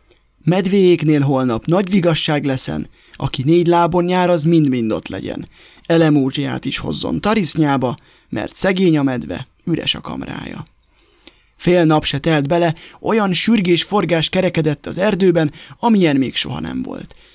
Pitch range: 145-180 Hz